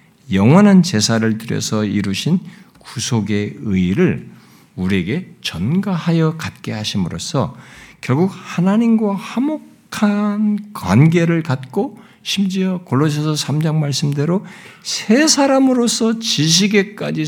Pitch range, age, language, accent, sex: 115-195 Hz, 60-79, Korean, native, male